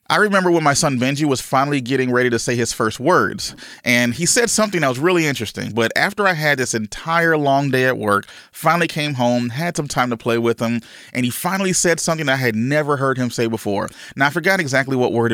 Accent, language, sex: American, English, male